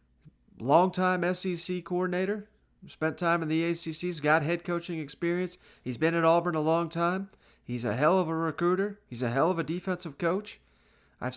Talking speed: 180 wpm